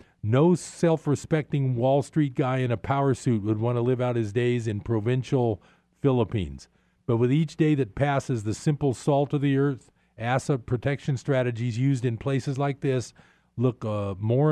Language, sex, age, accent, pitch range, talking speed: English, male, 50-69, American, 110-135 Hz, 175 wpm